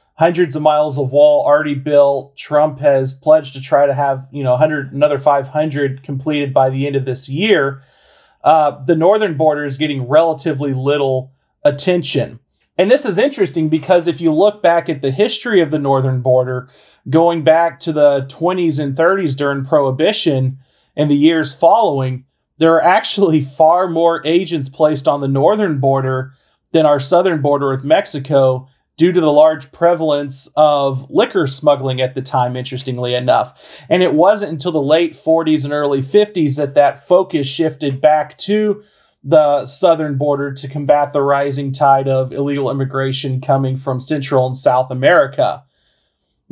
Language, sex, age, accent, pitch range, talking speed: English, male, 40-59, American, 135-160 Hz, 160 wpm